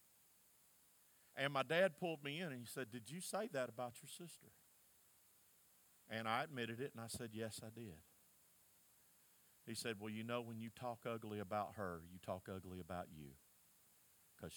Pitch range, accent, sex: 115-145 Hz, American, male